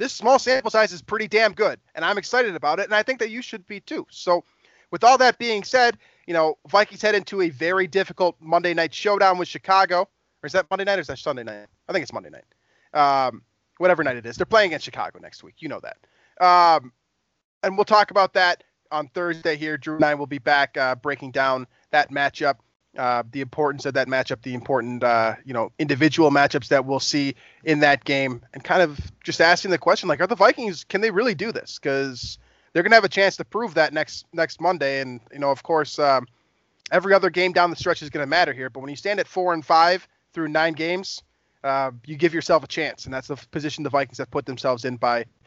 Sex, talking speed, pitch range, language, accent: male, 240 wpm, 135-185 Hz, English, American